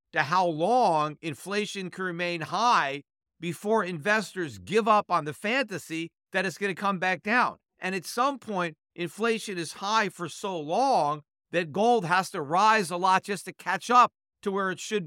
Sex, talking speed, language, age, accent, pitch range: male, 185 wpm, English, 50-69, American, 160-205 Hz